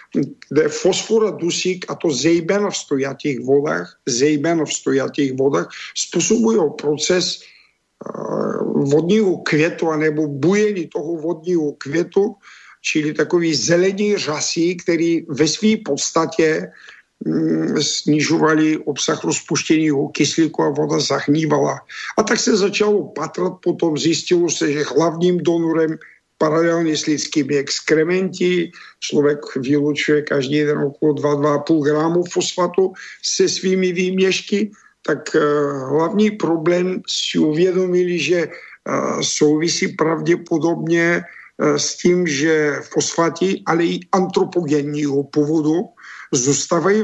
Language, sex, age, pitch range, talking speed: Czech, male, 50-69, 150-185 Hz, 105 wpm